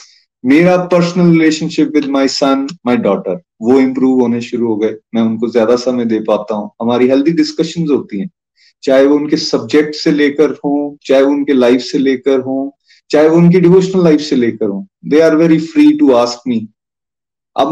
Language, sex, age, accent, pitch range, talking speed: Hindi, male, 30-49, native, 120-160 Hz, 190 wpm